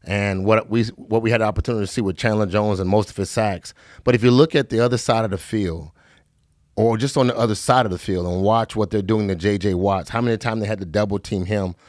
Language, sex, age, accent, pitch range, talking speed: English, male, 30-49, American, 100-120 Hz, 275 wpm